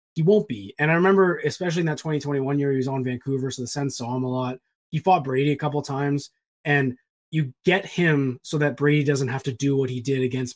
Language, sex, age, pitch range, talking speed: English, male, 20-39, 130-160 Hz, 250 wpm